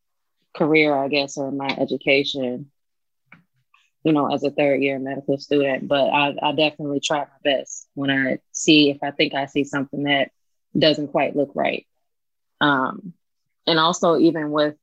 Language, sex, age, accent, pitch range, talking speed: English, female, 20-39, American, 145-165 Hz, 160 wpm